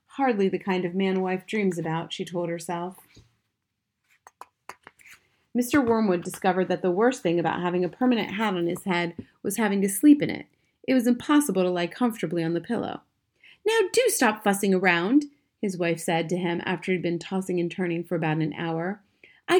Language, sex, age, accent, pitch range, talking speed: English, female, 30-49, American, 175-245 Hz, 185 wpm